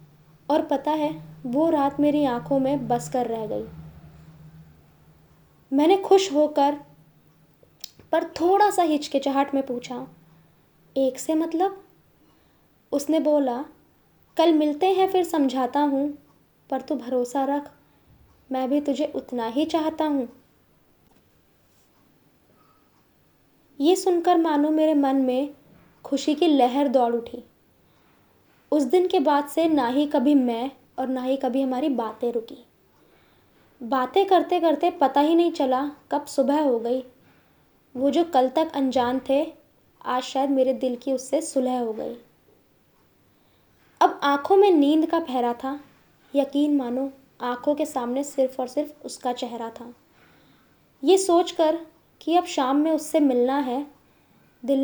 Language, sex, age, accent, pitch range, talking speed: Hindi, female, 20-39, native, 255-305 Hz, 135 wpm